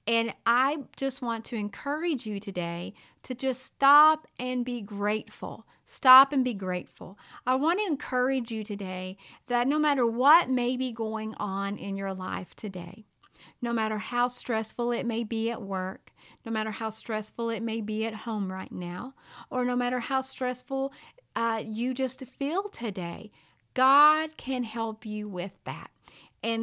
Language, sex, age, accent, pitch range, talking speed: English, female, 40-59, American, 215-255 Hz, 165 wpm